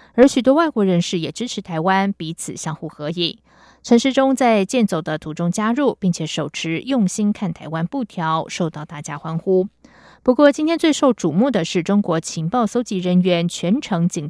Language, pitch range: German, 170-235 Hz